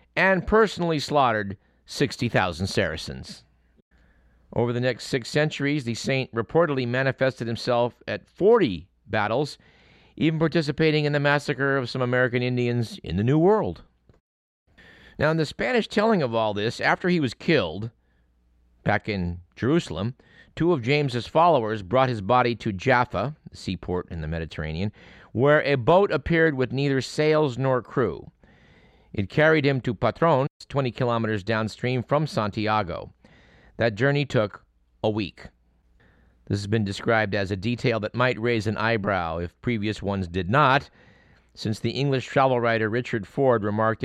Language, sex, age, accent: English, male, 50-69, American